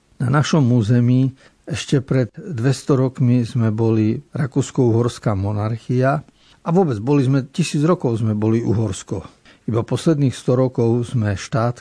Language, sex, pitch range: Slovak, male, 115-140 Hz